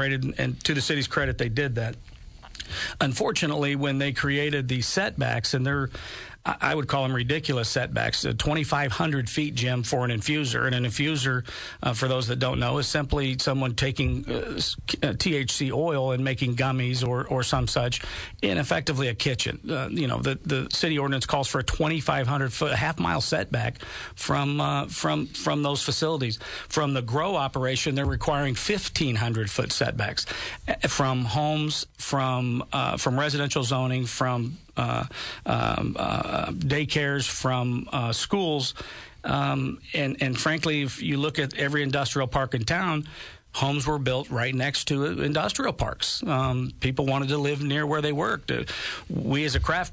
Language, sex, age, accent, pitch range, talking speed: English, male, 50-69, American, 125-145 Hz, 165 wpm